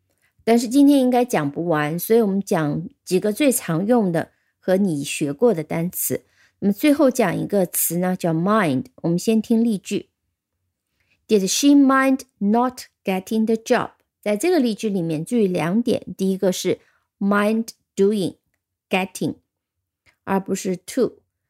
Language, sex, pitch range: Chinese, female, 175-230 Hz